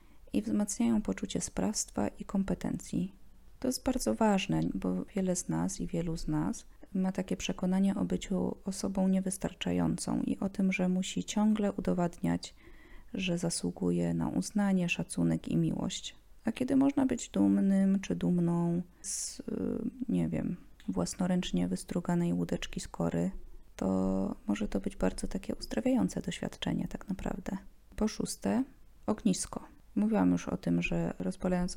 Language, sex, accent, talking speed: Polish, female, native, 135 wpm